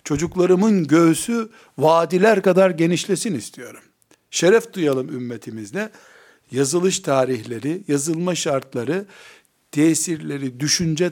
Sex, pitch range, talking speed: male, 140-190 Hz, 80 wpm